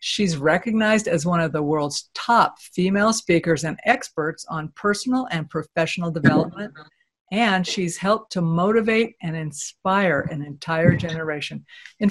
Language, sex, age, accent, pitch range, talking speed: English, female, 50-69, American, 160-205 Hz, 140 wpm